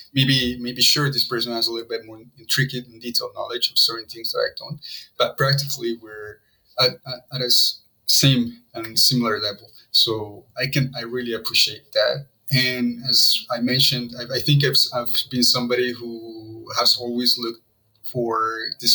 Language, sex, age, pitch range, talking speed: English, male, 30-49, 115-125 Hz, 185 wpm